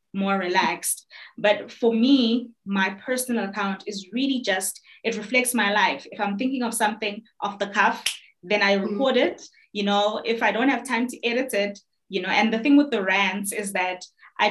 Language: English